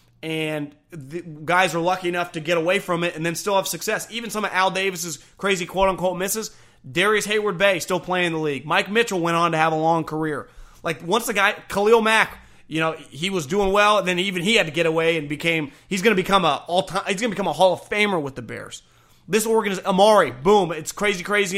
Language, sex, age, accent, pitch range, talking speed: English, male, 30-49, American, 170-210 Hz, 250 wpm